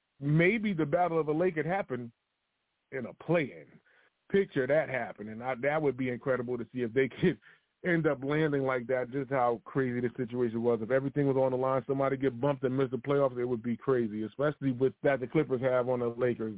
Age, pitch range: 30-49, 120-145 Hz